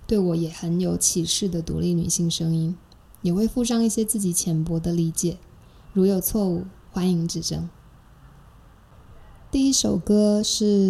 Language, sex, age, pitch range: Chinese, female, 20-39, 180-205 Hz